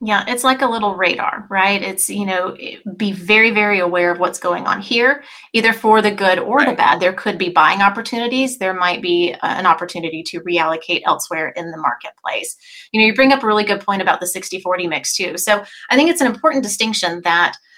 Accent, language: American, English